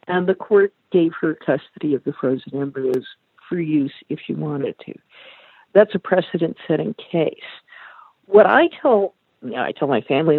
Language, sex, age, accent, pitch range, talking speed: English, female, 50-69, American, 155-220 Hz, 175 wpm